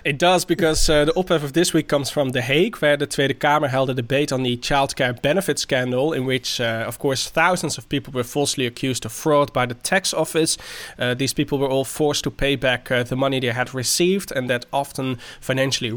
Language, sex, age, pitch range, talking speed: English, male, 20-39, 125-155 Hz, 230 wpm